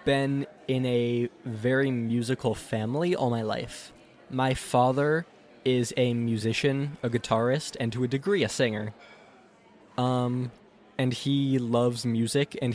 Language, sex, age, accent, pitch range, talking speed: English, male, 20-39, American, 120-145 Hz, 130 wpm